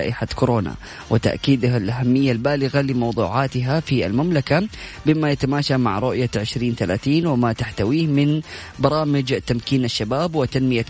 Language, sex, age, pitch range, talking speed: Arabic, female, 20-39, 120-140 Hz, 105 wpm